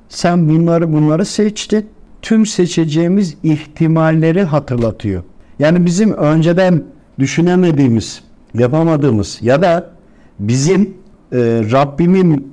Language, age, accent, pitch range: Turkish, 60-79, native, 140-200 Hz